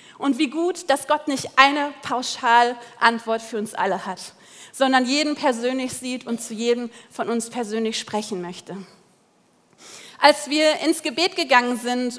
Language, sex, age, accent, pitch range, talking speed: German, female, 30-49, German, 240-295 Hz, 150 wpm